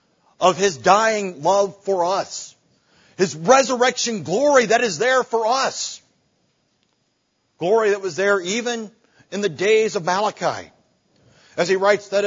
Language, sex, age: English, male, 50-69